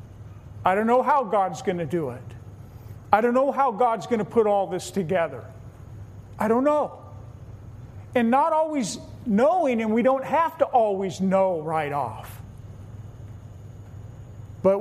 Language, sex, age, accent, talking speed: English, male, 40-59, American, 150 wpm